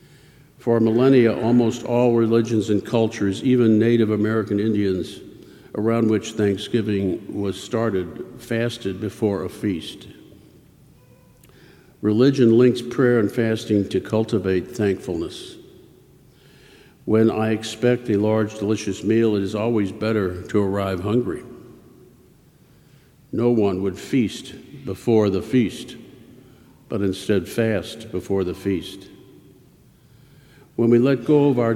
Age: 60-79